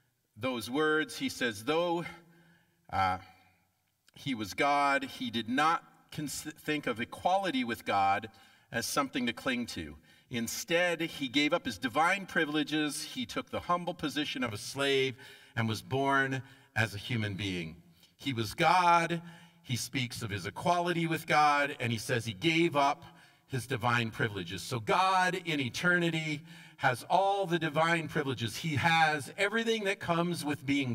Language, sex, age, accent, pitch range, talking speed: English, male, 50-69, American, 135-180 Hz, 155 wpm